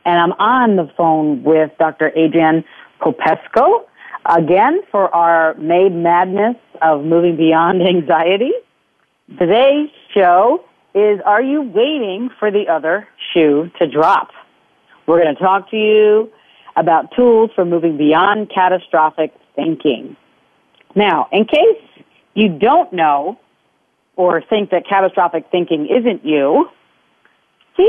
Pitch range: 160-235 Hz